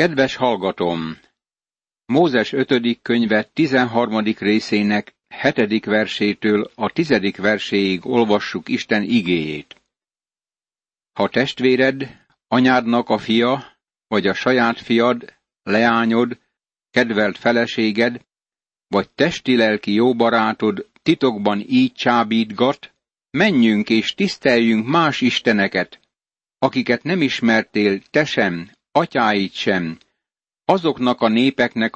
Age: 60-79